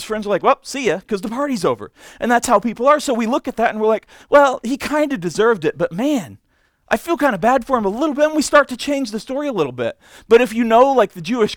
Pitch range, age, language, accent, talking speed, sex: 210-265 Hz, 40-59, English, American, 300 wpm, male